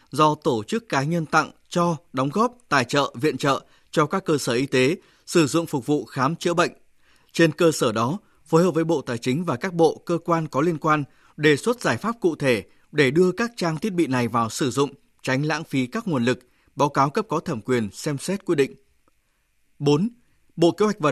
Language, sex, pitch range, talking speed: Vietnamese, male, 135-175 Hz, 230 wpm